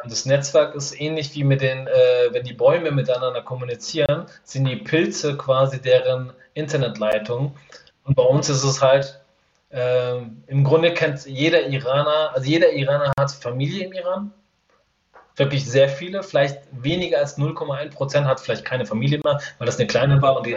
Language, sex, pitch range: German, male, 135-165 Hz